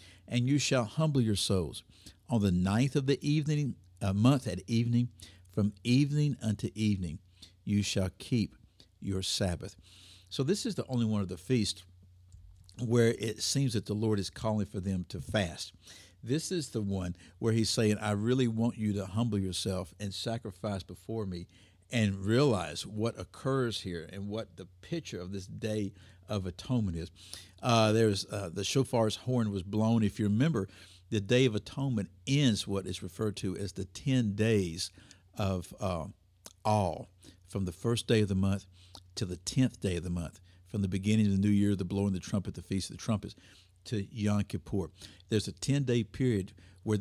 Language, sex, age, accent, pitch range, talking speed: English, male, 60-79, American, 95-115 Hz, 185 wpm